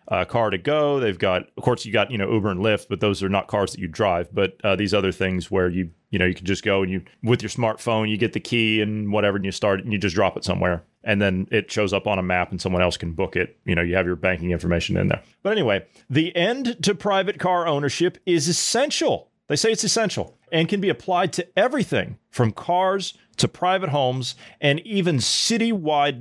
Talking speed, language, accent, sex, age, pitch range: 245 wpm, English, American, male, 30-49, 100-145 Hz